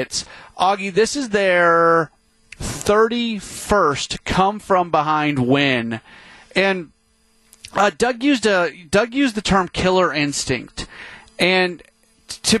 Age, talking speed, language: 30-49, 95 wpm, English